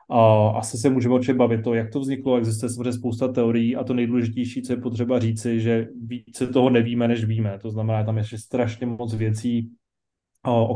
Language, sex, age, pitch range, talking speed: Slovak, male, 30-49, 115-125 Hz, 190 wpm